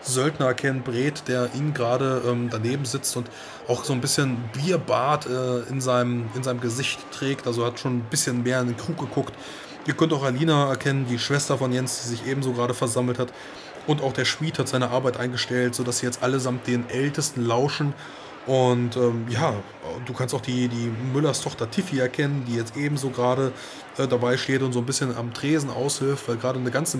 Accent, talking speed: German, 200 wpm